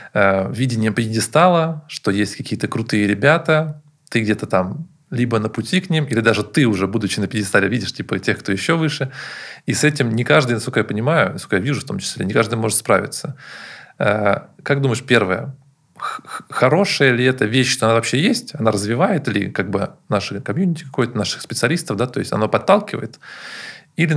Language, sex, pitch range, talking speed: Russian, male, 110-145 Hz, 180 wpm